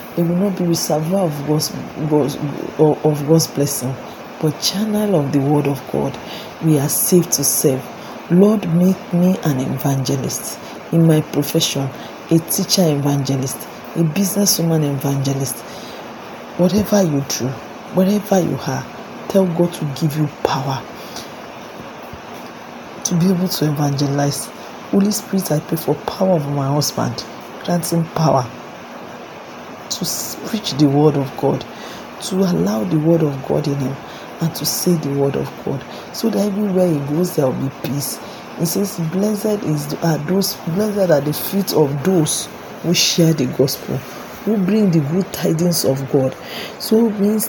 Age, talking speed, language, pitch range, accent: 40-59, 155 wpm, English, 145-190 Hz, Nigerian